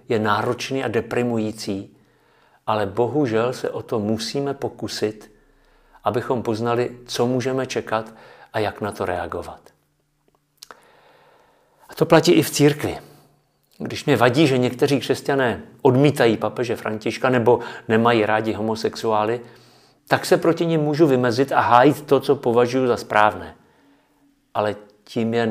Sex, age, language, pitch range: male, 50-69, Czech, 115-145 Hz